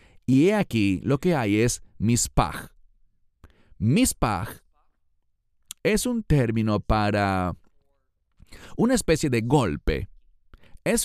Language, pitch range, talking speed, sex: English, 95-145 Hz, 90 wpm, male